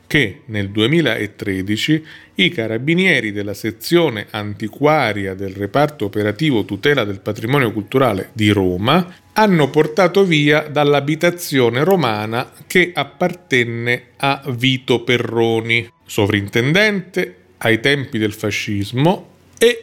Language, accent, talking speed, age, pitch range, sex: Italian, native, 95 wpm, 40-59, 105-150 Hz, male